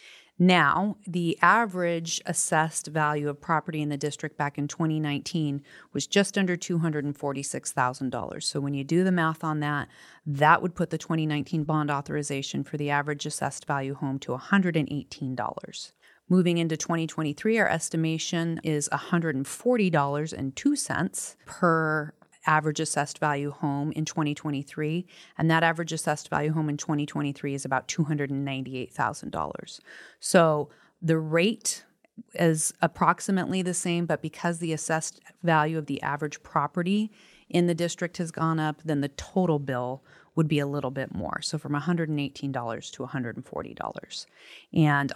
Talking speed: 135 wpm